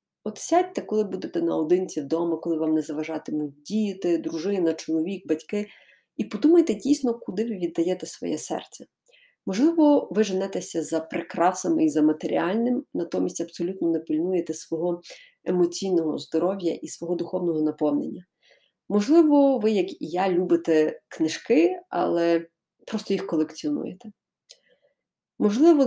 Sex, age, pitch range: female, 30-49, 165-235 Hz